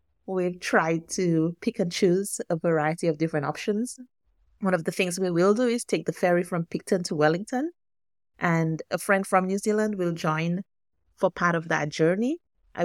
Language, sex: English, female